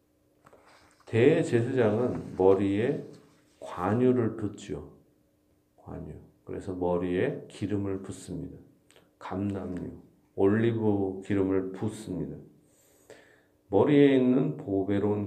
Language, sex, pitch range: Korean, male, 75-110 Hz